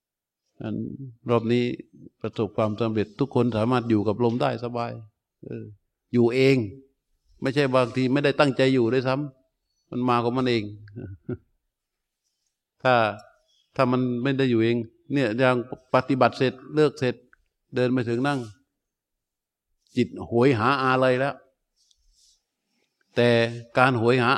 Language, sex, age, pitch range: Thai, male, 60-79, 115-135 Hz